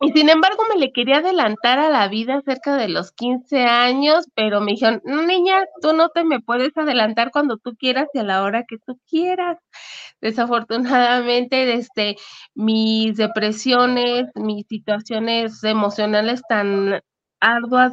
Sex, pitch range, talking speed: female, 225-275 Hz, 150 wpm